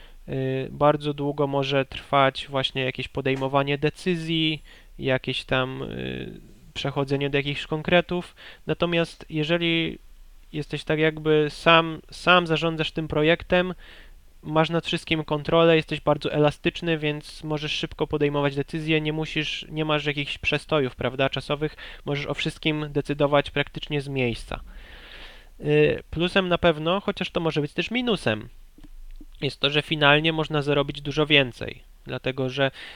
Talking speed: 135 wpm